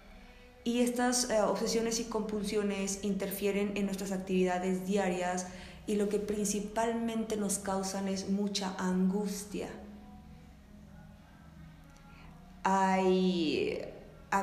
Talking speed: 90 wpm